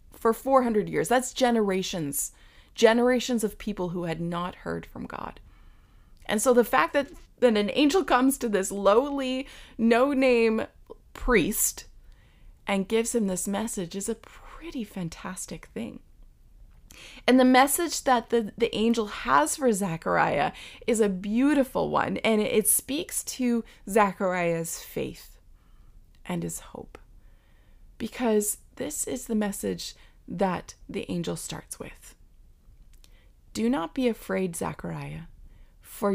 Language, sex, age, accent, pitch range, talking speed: English, female, 20-39, American, 180-250 Hz, 130 wpm